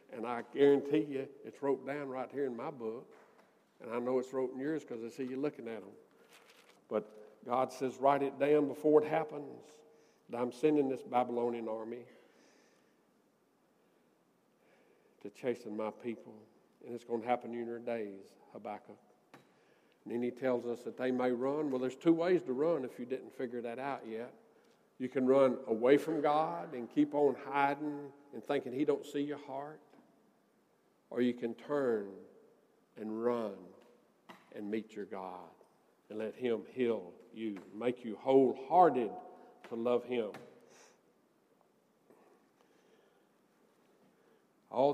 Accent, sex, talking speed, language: American, male, 155 wpm, English